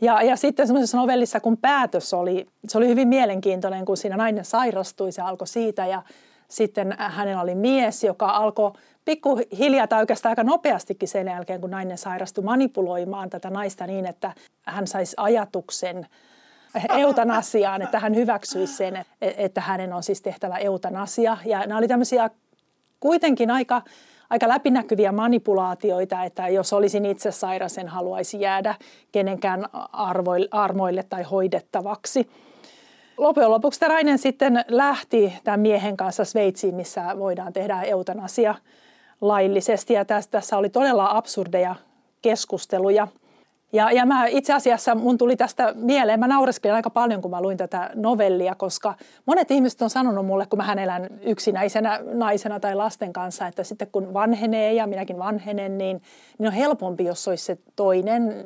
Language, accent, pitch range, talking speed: Finnish, native, 190-235 Hz, 145 wpm